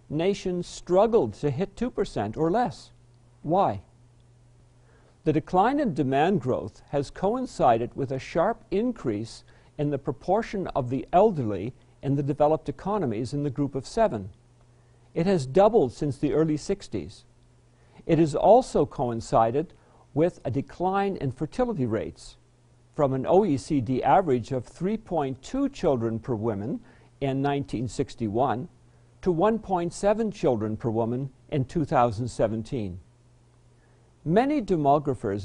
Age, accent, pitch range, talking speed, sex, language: 50-69, American, 120-175 Hz, 120 wpm, male, English